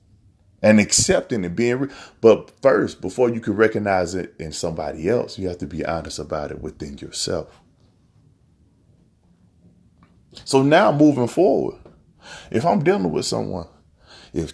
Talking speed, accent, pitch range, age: 140 wpm, American, 90-140 Hz, 30-49